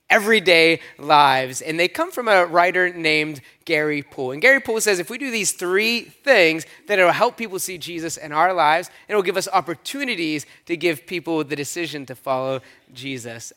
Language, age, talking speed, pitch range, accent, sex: English, 30-49, 200 wpm, 150-200 Hz, American, male